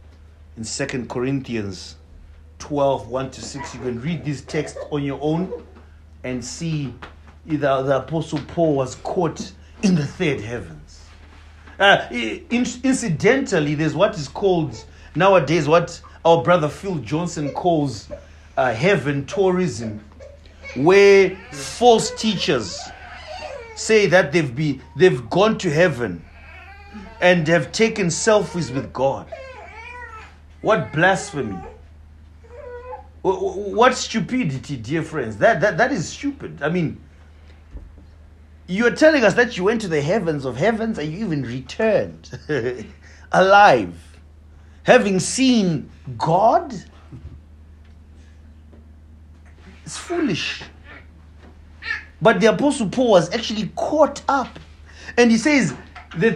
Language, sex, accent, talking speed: English, male, South African, 115 wpm